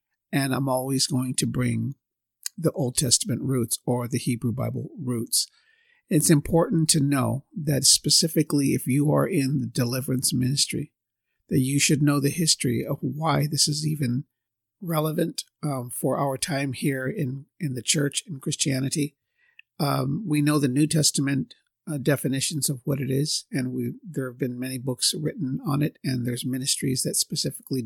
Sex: male